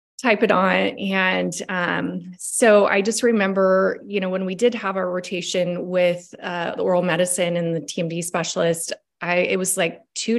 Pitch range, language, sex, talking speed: 170-195 Hz, English, female, 175 wpm